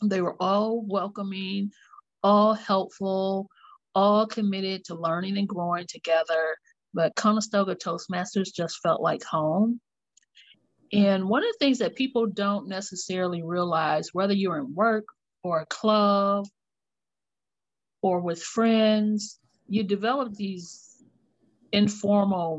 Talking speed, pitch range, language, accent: 115 wpm, 165-215 Hz, English, American